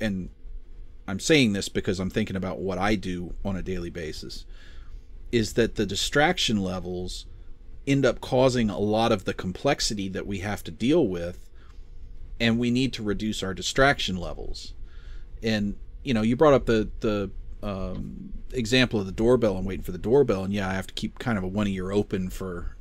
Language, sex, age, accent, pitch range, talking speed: English, male, 40-59, American, 90-115 Hz, 190 wpm